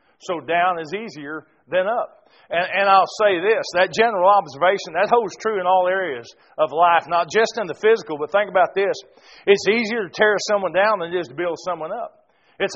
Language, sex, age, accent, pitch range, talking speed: English, male, 40-59, American, 170-215 Hz, 210 wpm